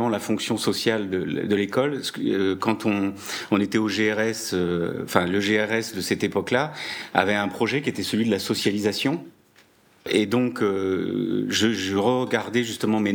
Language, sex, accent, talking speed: French, male, French, 160 wpm